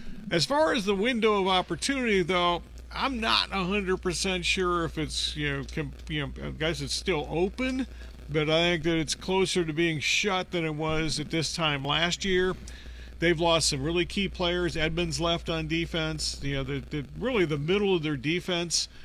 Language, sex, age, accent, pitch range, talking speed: English, male, 40-59, American, 140-180 Hz, 200 wpm